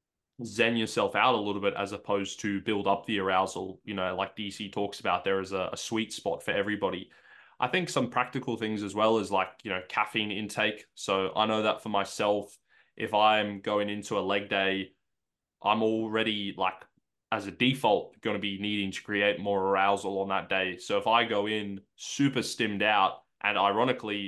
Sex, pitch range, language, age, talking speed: male, 95-110 Hz, English, 20-39, 200 wpm